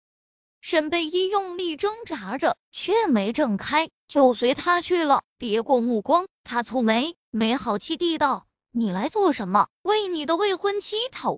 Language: Chinese